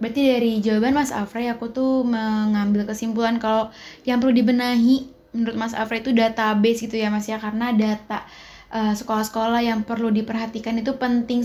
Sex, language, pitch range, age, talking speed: female, Indonesian, 220-245 Hz, 10-29, 165 wpm